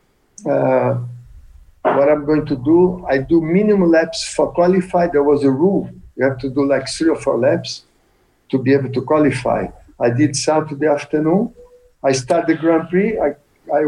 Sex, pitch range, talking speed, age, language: male, 135-175 Hz, 175 wpm, 60-79, German